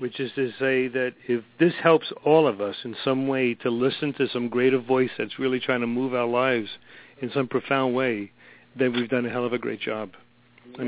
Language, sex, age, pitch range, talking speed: English, male, 50-69, 120-145 Hz, 225 wpm